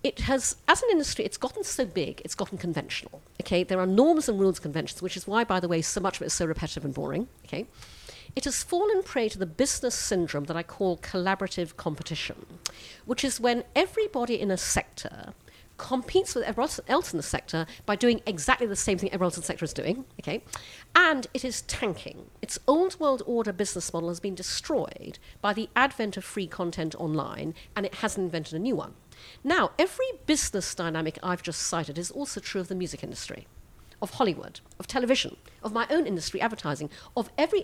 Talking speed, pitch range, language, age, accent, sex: 205 wpm, 175-270 Hz, English, 50-69, British, female